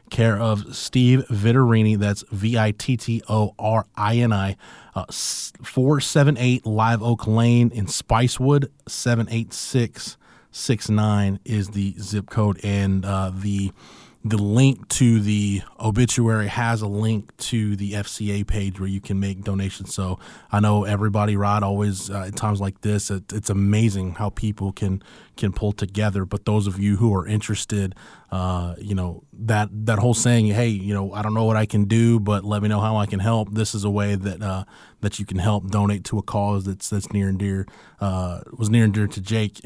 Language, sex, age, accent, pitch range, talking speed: English, male, 20-39, American, 100-115 Hz, 185 wpm